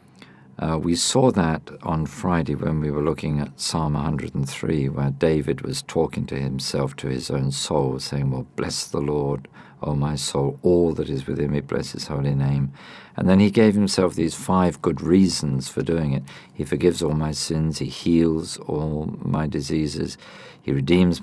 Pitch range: 70-90 Hz